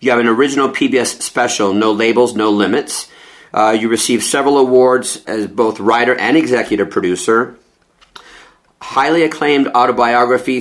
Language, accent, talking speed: English, American, 135 wpm